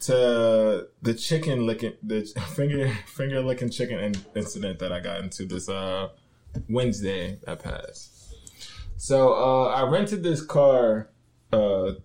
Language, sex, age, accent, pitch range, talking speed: English, male, 20-39, American, 105-125 Hz, 130 wpm